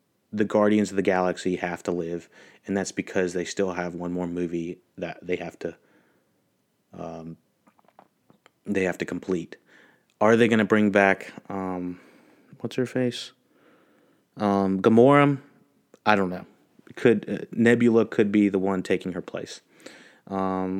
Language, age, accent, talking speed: English, 30-49, American, 150 wpm